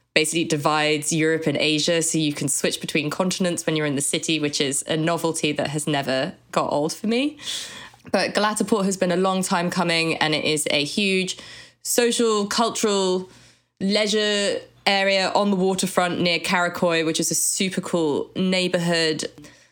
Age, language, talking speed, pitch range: 20-39, English, 165 wpm, 150-185 Hz